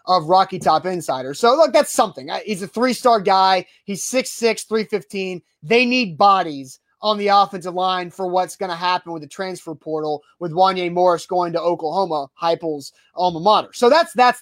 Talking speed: 180 wpm